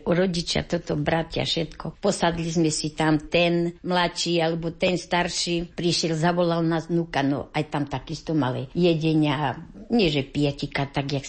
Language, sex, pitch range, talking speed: Slovak, female, 150-180 Hz, 150 wpm